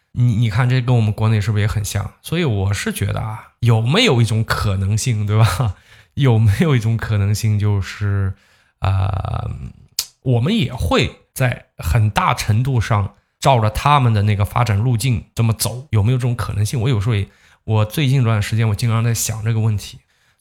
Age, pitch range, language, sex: 20-39, 105-125 Hz, Chinese, male